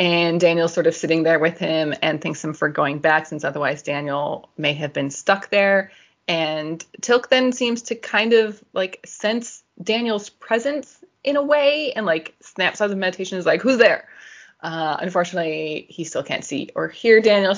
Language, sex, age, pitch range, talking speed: English, female, 20-39, 160-230 Hz, 190 wpm